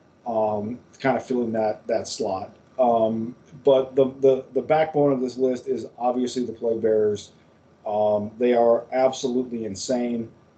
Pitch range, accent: 115-140 Hz, American